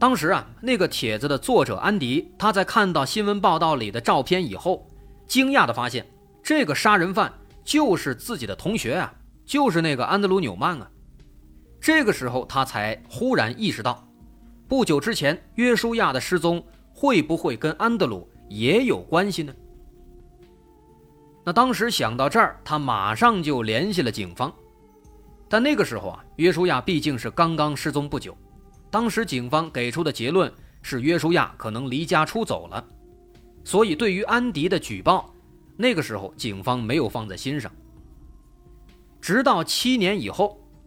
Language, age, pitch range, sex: Chinese, 30-49, 120-195 Hz, male